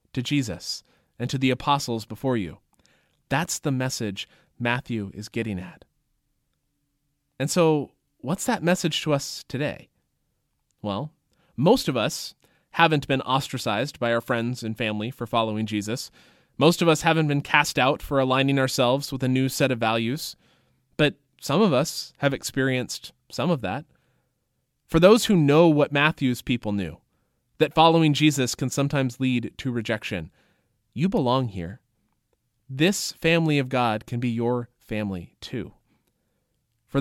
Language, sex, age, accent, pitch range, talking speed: English, male, 20-39, American, 115-150 Hz, 150 wpm